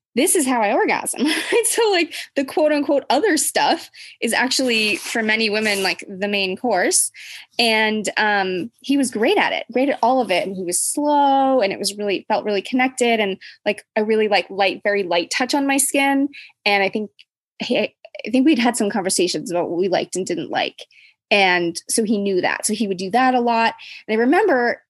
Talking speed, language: 210 wpm, English